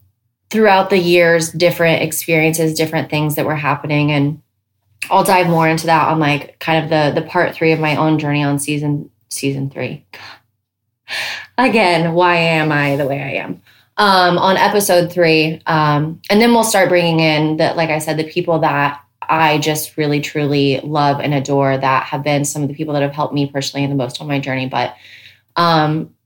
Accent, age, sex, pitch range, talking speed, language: American, 20-39, female, 145-170 Hz, 195 wpm, English